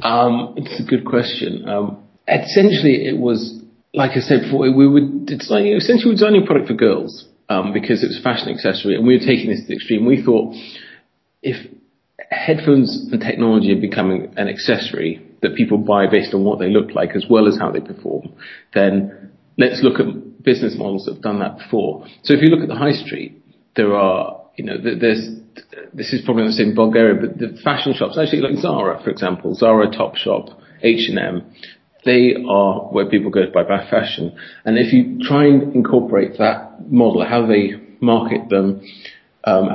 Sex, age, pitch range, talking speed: male, 30-49, 105-140 Hz, 195 wpm